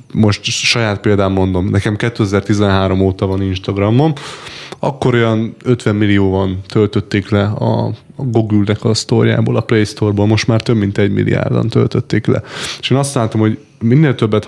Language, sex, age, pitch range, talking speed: Hungarian, male, 20-39, 105-120 Hz, 160 wpm